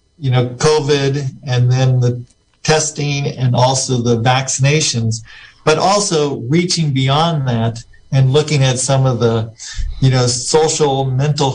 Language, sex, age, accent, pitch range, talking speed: English, male, 50-69, American, 120-150 Hz, 135 wpm